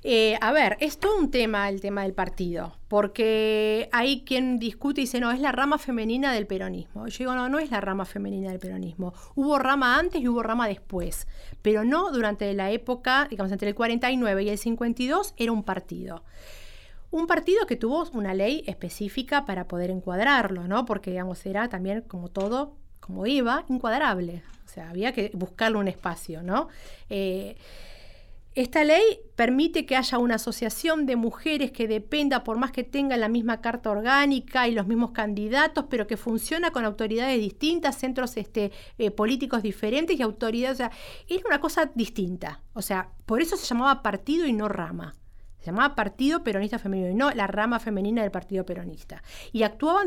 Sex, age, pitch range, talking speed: female, 40-59, 200-265 Hz, 180 wpm